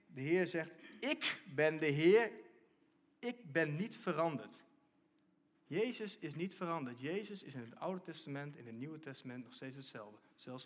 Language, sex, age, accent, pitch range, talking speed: Dutch, male, 40-59, Dutch, 140-230 Hz, 165 wpm